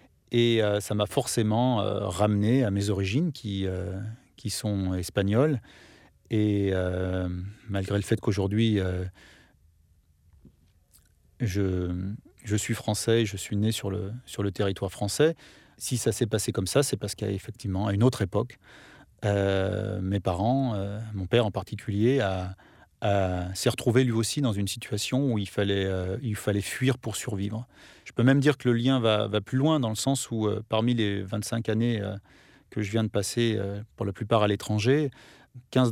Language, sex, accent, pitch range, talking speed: French, male, French, 100-115 Hz, 180 wpm